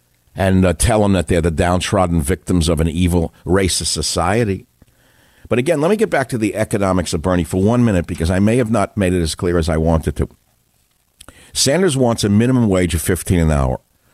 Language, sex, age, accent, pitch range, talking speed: English, male, 50-69, American, 85-105 Hz, 210 wpm